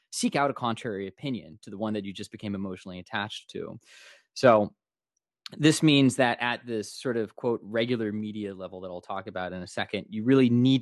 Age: 20-39